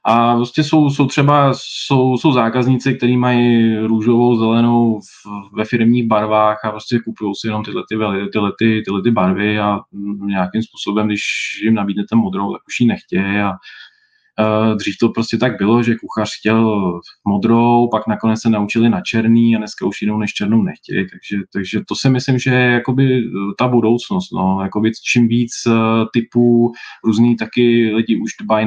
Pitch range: 100-115 Hz